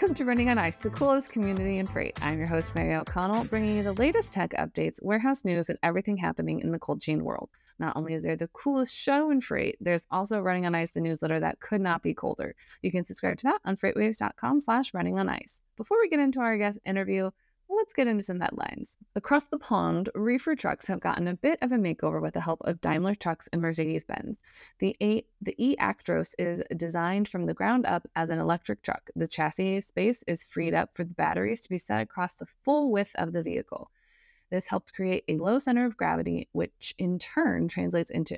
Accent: American